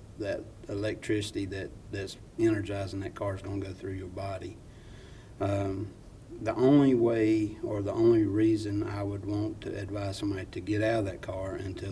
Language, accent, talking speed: English, American, 170 wpm